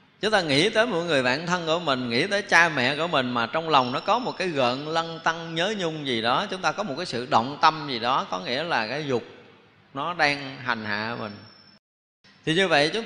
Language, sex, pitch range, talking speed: Vietnamese, male, 125-175 Hz, 250 wpm